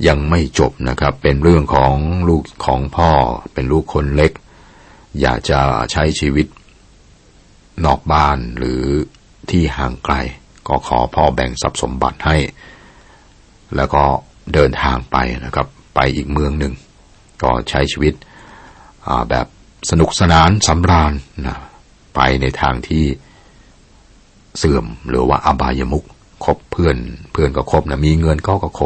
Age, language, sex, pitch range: 60-79, Thai, male, 65-80 Hz